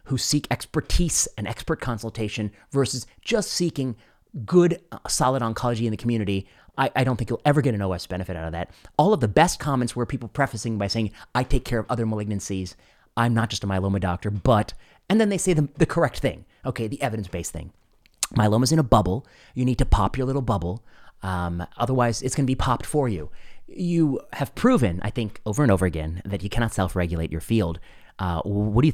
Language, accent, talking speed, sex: English, American, 210 wpm, male